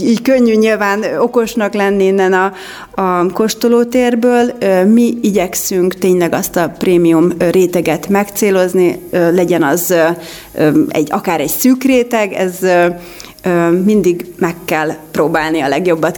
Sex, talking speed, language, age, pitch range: female, 120 wpm, Hungarian, 30-49, 170-200 Hz